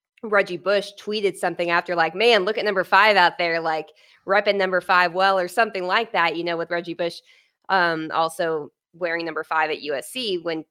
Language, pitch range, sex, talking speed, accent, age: English, 170-200 Hz, female, 195 wpm, American, 20-39